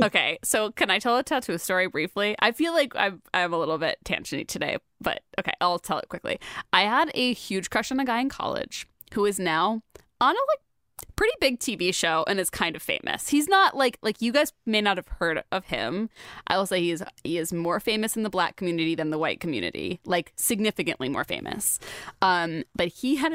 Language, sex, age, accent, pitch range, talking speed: English, female, 20-39, American, 170-230 Hz, 225 wpm